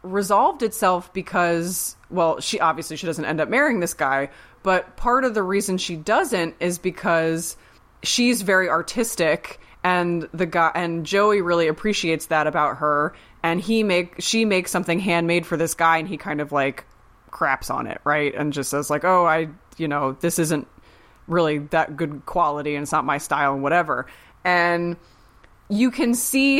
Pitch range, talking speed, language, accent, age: 155-210 Hz, 180 wpm, English, American, 20-39